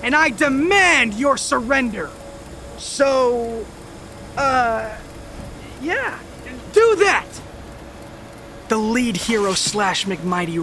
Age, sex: 20-39, male